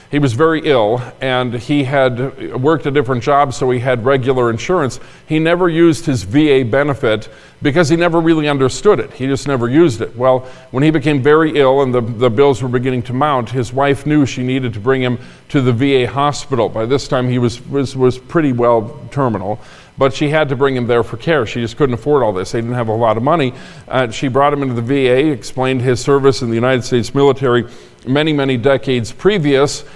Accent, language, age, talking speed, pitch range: American, English, 50-69, 220 wpm, 120-145 Hz